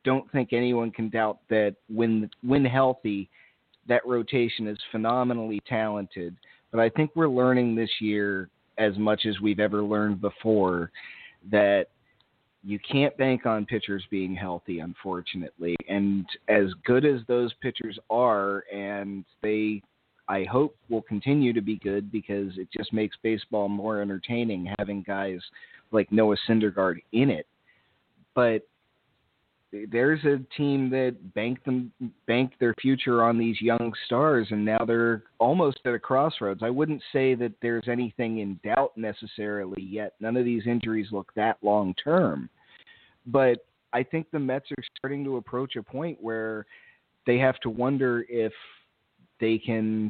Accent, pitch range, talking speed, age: American, 105-125 Hz, 150 wpm, 30-49